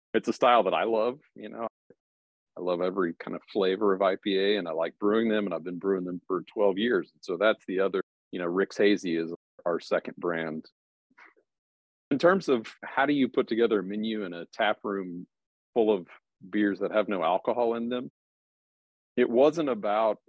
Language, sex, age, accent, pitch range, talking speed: English, male, 40-59, American, 95-115 Hz, 200 wpm